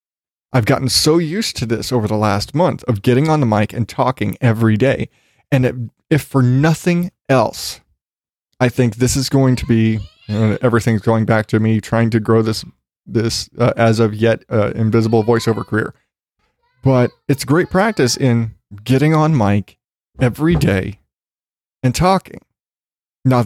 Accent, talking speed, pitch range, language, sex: American, 160 wpm, 110-135 Hz, English, male